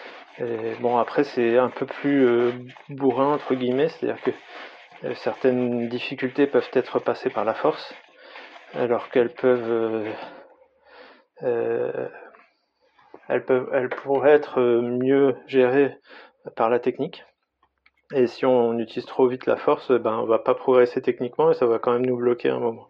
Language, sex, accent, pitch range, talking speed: French, male, French, 115-135 Hz, 165 wpm